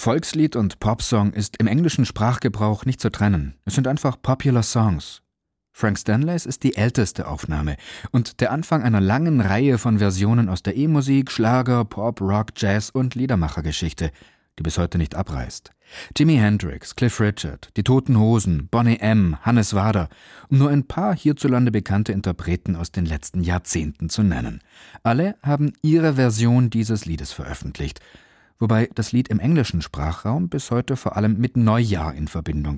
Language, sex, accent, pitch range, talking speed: German, male, German, 90-125 Hz, 160 wpm